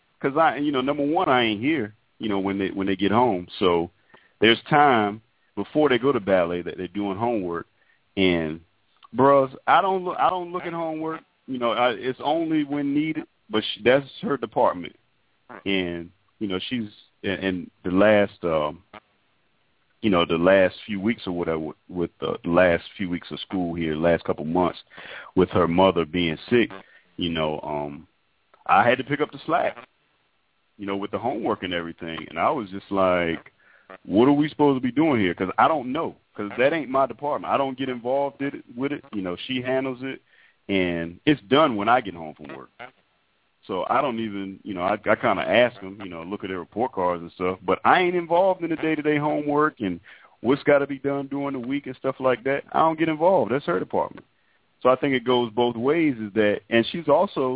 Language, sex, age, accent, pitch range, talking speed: English, male, 40-59, American, 95-140 Hz, 210 wpm